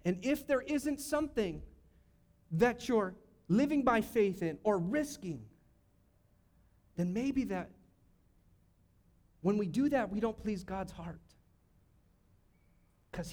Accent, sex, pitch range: American, male, 170-225 Hz